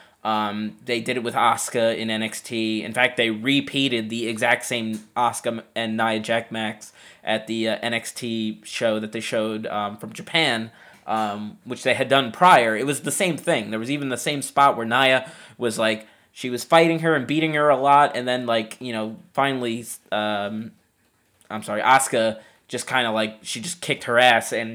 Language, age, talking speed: English, 20-39, 195 wpm